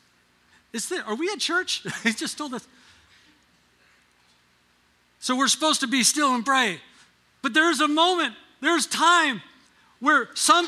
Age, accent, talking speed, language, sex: 50-69, American, 135 wpm, English, male